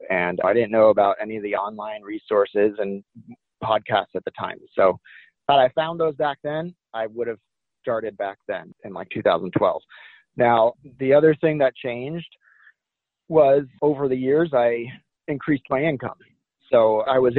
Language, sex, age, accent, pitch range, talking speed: English, male, 30-49, American, 110-155 Hz, 165 wpm